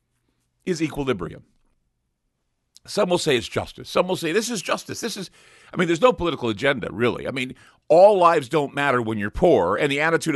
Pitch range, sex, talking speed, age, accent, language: 110-155 Hz, male, 195 wpm, 50-69, American, English